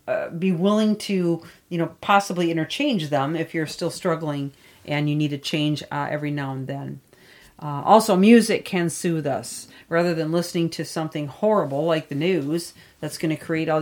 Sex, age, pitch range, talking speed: female, 40-59, 150-180 Hz, 180 wpm